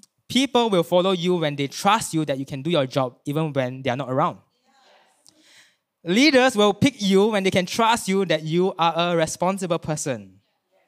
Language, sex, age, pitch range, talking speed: English, male, 20-39, 150-205 Hz, 195 wpm